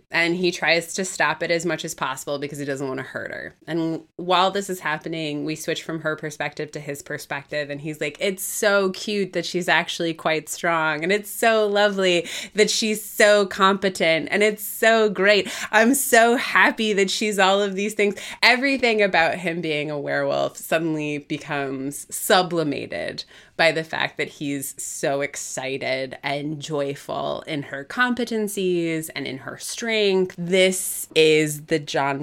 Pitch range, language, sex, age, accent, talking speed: 145-190 Hz, English, female, 20-39, American, 170 wpm